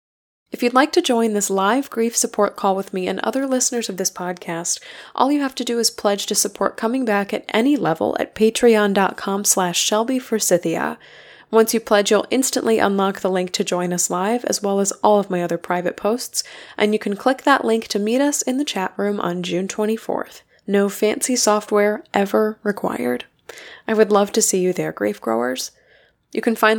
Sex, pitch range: female, 195-240 Hz